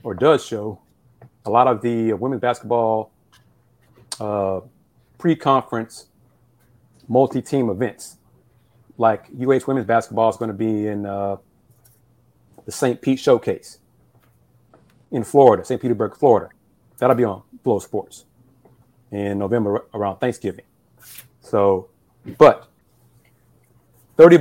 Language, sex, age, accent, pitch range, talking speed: English, male, 30-49, American, 115-155 Hz, 110 wpm